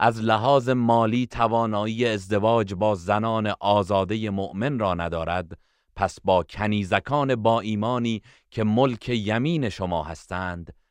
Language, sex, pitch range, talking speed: Persian, male, 90-115 Hz, 115 wpm